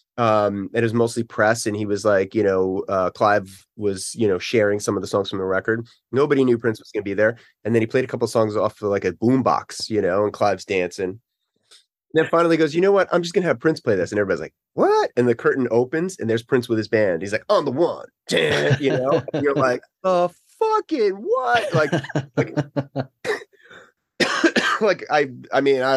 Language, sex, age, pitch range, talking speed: English, male, 30-49, 100-135 Hz, 230 wpm